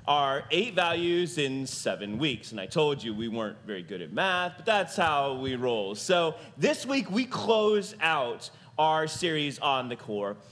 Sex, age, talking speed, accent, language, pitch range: male, 30-49, 185 wpm, American, English, 130-185 Hz